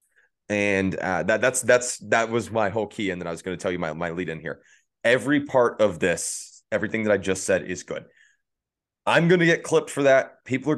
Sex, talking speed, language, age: male, 240 wpm, English, 30-49